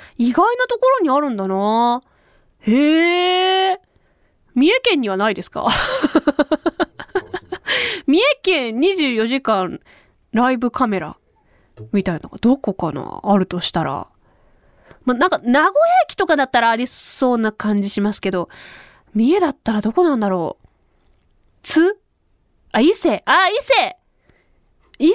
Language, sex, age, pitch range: Japanese, female, 20-39, 215-355 Hz